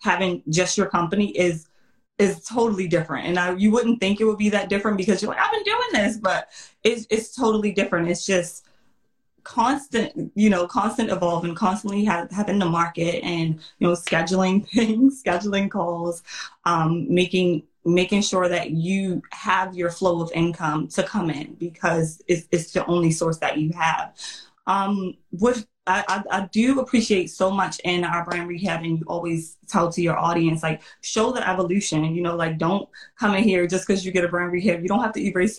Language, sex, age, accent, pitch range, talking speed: English, female, 20-39, American, 170-220 Hz, 190 wpm